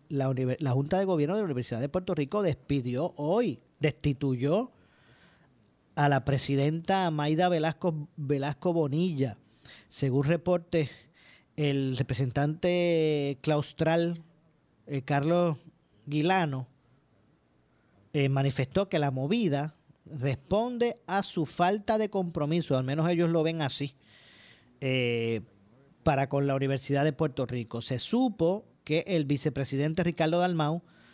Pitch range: 135-170 Hz